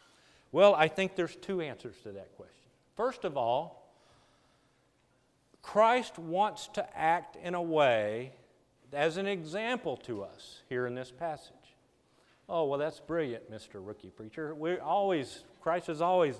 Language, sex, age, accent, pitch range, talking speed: English, male, 50-69, American, 140-180 Hz, 145 wpm